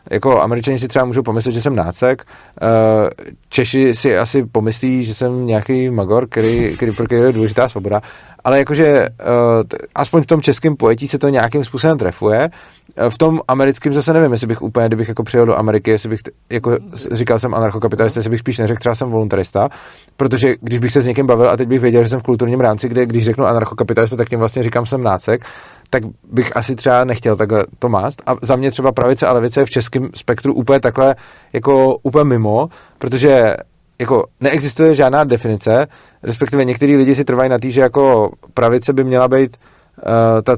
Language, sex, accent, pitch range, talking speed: Czech, male, native, 115-135 Hz, 190 wpm